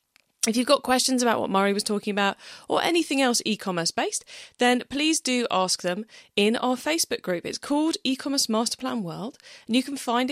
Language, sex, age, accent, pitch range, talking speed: English, female, 30-49, British, 185-265 Hz, 190 wpm